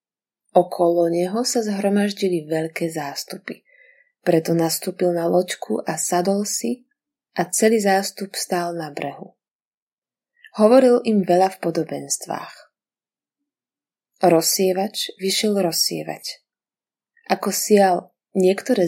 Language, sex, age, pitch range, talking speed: Slovak, female, 20-39, 165-205 Hz, 95 wpm